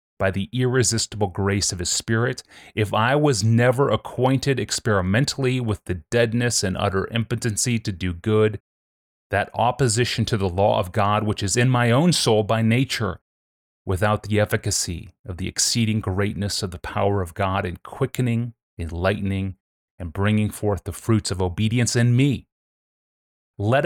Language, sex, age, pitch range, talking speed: English, male, 30-49, 95-120 Hz, 155 wpm